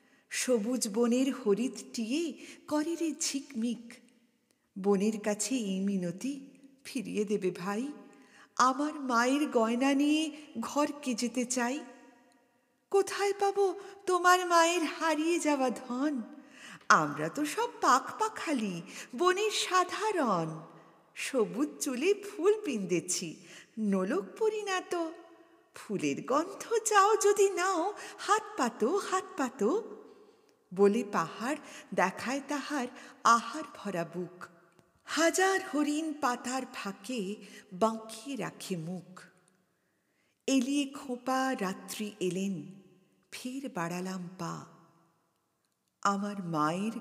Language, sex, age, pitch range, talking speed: Bengali, female, 50-69, 205-310 Hz, 85 wpm